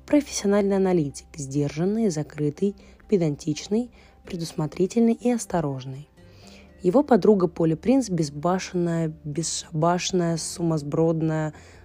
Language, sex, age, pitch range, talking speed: Russian, female, 20-39, 150-195 Hz, 75 wpm